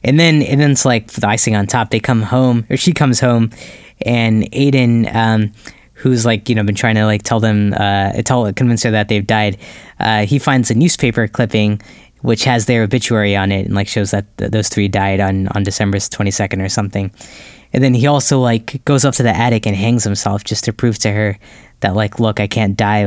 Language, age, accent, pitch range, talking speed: English, 10-29, American, 105-125 Hz, 220 wpm